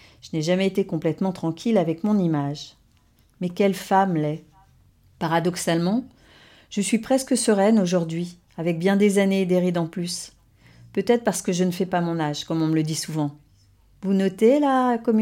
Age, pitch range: 40-59, 170-210 Hz